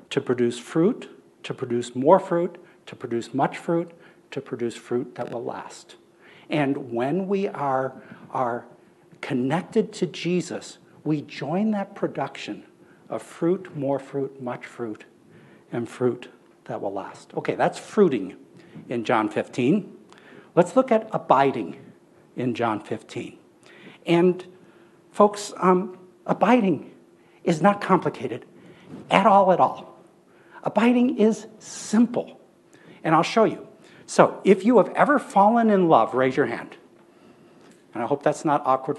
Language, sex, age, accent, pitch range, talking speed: English, male, 60-79, American, 135-200 Hz, 135 wpm